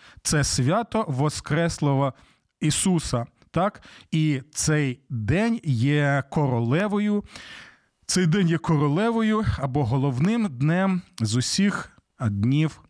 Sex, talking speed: male, 95 wpm